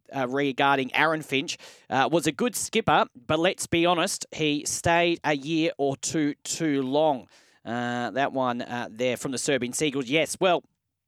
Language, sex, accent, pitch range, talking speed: English, male, Australian, 130-170 Hz, 175 wpm